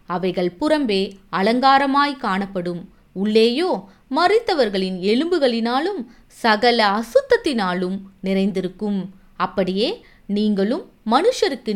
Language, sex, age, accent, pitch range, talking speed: Tamil, female, 20-39, native, 190-285 Hz, 65 wpm